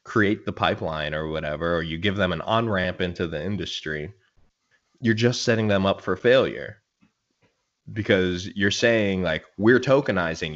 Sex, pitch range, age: male, 90-115 Hz, 20-39